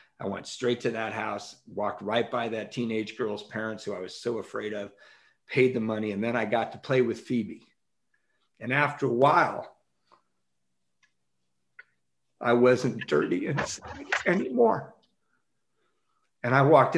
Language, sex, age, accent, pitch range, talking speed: English, male, 50-69, American, 115-150 Hz, 145 wpm